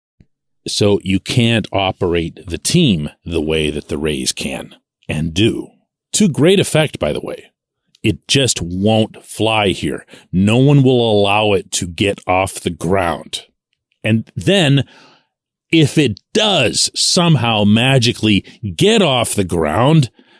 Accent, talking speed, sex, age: American, 135 wpm, male, 40-59